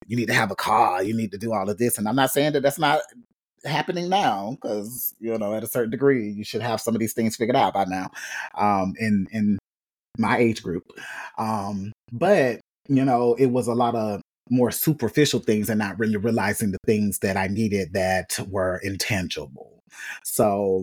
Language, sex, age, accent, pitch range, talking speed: English, male, 30-49, American, 100-120 Hz, 205 wpm